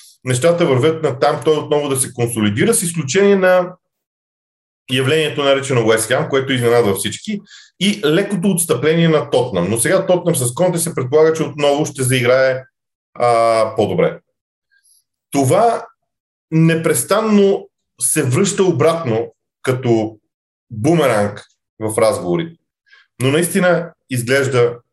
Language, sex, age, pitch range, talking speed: Bulgarian, male, 40-59, 110-155 Hz, 120 wpm